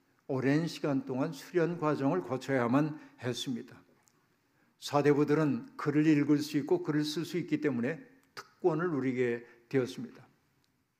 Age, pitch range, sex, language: 60-79, 135-165 Hz, male, Korean